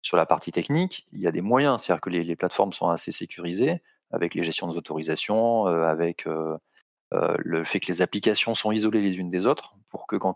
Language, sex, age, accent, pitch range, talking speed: French, male, 30-49, French, 85-105 Hz, 230 wpm